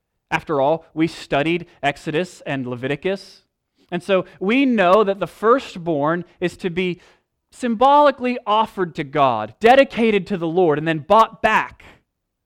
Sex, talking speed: male, 140 wpm